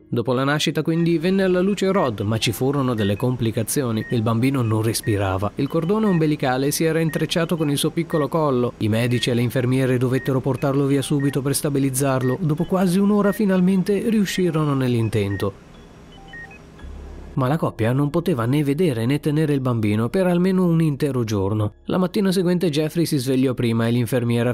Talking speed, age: 170 wpm, 30-49